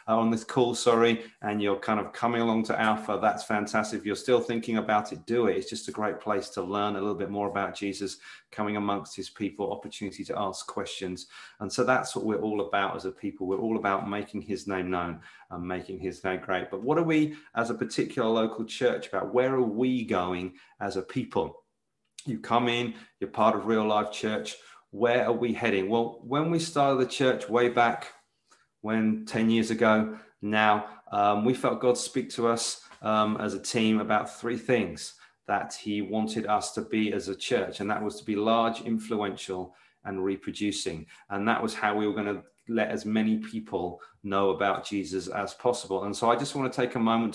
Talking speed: 210 wpm